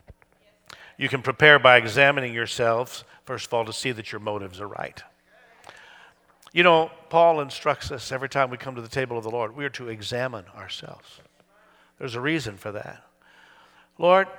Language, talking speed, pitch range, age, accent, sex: English, 175 wpm, 110-140 Hz, 60-79, American, male